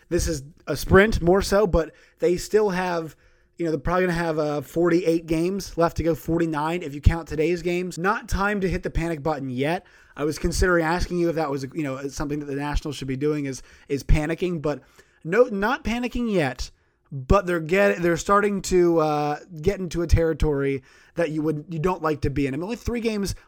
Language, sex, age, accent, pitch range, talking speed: English, male, 20-39, American, 150-180 Hz, 220 wpm